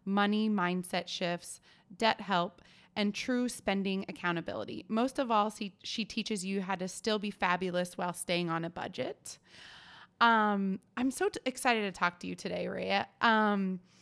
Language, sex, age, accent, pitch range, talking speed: English, female, 20-39, American, 180-220 Hz, 160 wpm